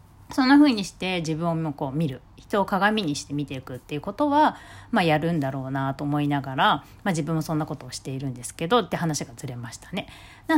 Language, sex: Japanese, female